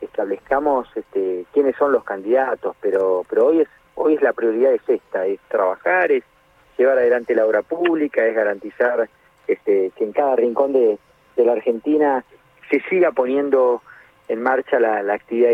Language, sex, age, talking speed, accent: Spanish, male, 40-59, 165 wpm, Argentinian